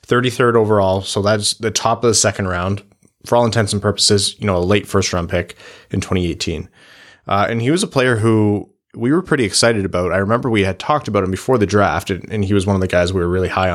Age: 20-39